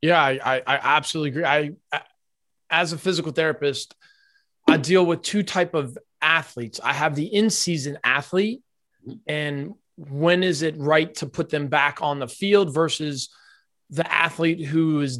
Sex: male